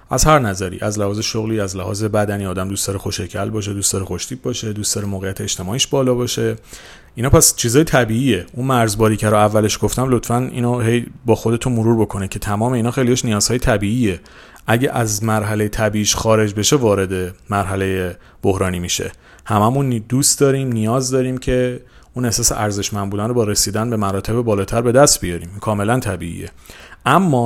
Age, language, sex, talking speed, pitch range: 40-59, Persian, male, 170 wpm, 100-125 Hz